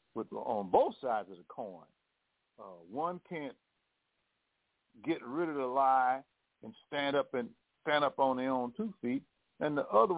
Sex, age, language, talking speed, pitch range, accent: male, 50-69, English, 165 wpm, 125-170 Hz, American